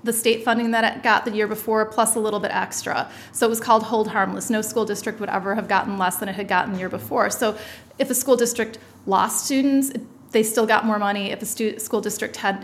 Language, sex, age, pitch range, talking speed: English, female, 30-49, 200-230 Hz, 245 wpm